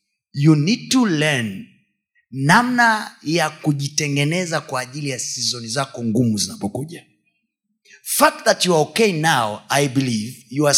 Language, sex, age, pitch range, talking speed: Swahili, male, 30-49, 145-235 Hz, 135 wpm